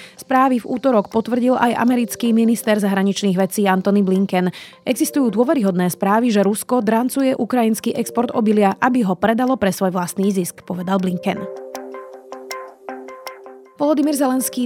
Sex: female